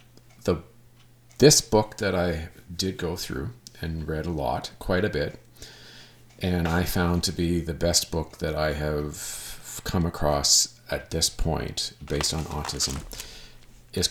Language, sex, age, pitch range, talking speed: English, male, 40-59, 80-105 Hz, 145 wpm